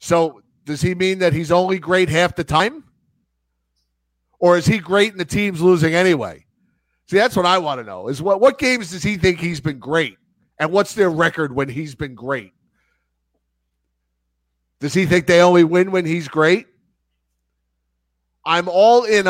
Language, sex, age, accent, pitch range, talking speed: English, male, 50-69, American, 110-170 Hz, 175 wpm